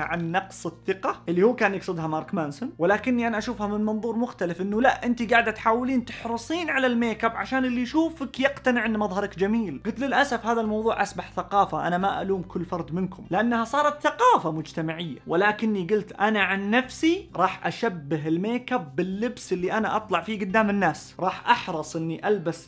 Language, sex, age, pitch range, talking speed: Arabic, male, 30-49, 180-235 Hz, 175 wpm